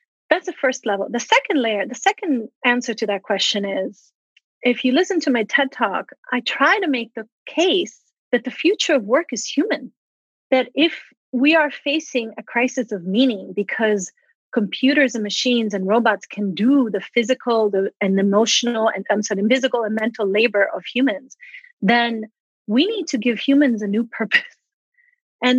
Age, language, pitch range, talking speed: 30-49, English, 210-275 Hz, 175 wpm